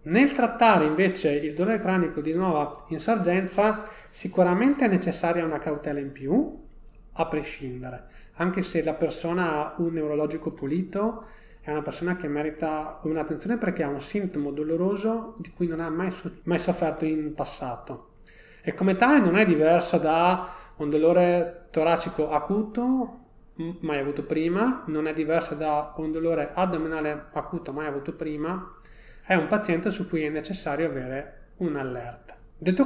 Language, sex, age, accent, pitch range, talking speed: Italian, male, 30-49, native, 150-180 Hz, 150 wpm